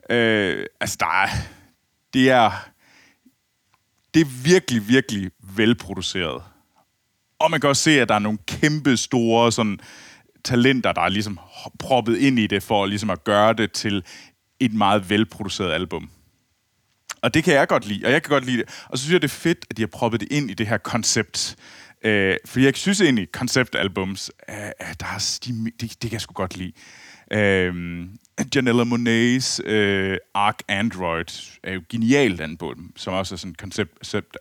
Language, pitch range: Danish, 100-135 Hz